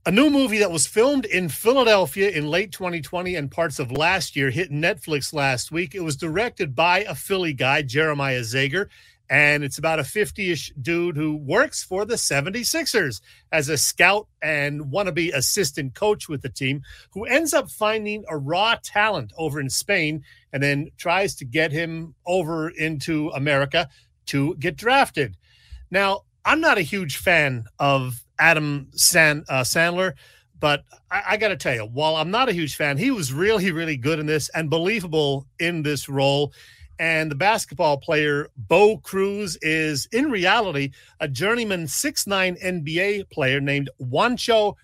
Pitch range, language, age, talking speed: 140-190 Hz, English, 40-59, 165 wpm